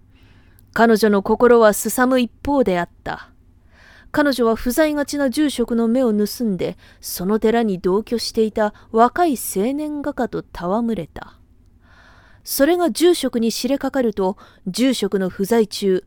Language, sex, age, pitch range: Japanese, female, 20-39, 170-235 Hz